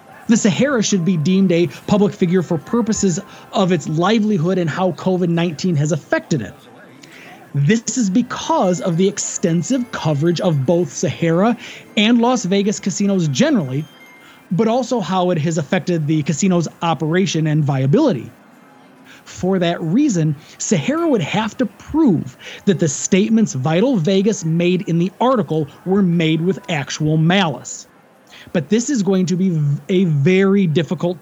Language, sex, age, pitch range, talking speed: English, male, 30-49, 165-220 Hz, 145 wpm